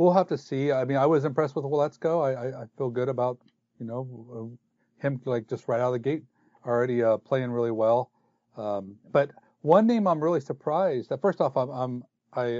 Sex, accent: male, American